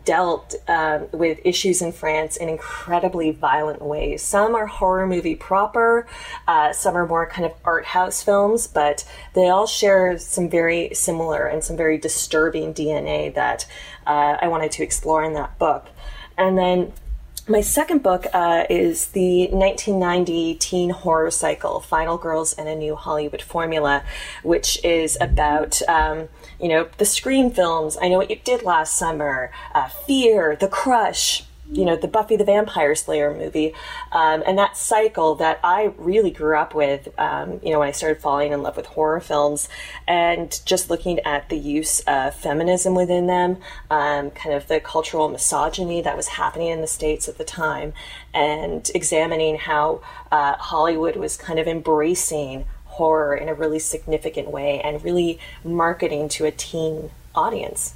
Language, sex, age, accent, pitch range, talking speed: English, female, 30-49, American, 155-185 Hz, 165 wpm